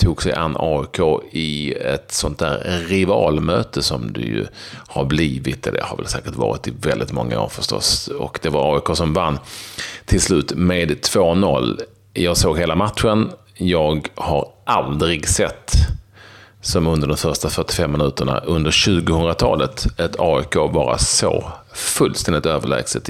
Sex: male